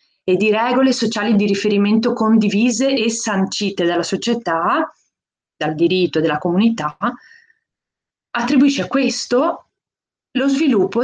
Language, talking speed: Italian, 110 wpm